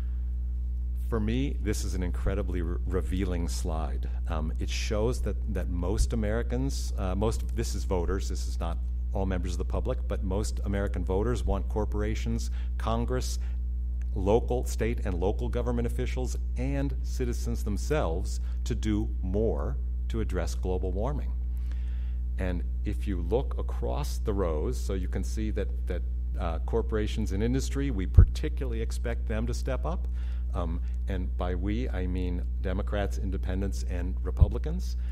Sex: male